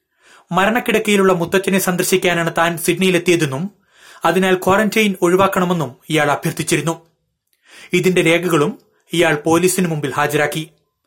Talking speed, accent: 85 wpm, native